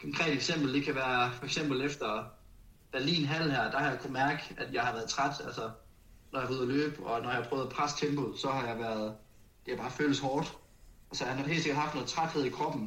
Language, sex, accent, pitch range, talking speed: Danish, male, native, 120-145 Hz, 260 wpm